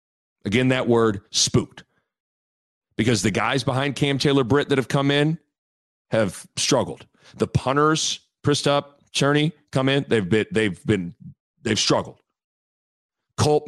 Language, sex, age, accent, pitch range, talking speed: English, male, 40-59, American, 115-145 Hz, 125 wpm